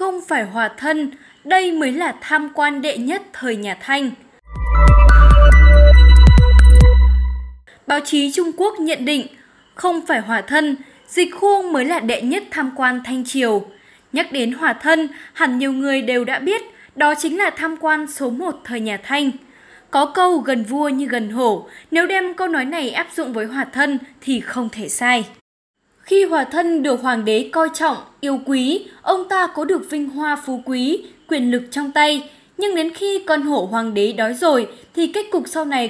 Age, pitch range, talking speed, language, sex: 10-29, 250-330 Hz, 185 wpm, Vietnamese, female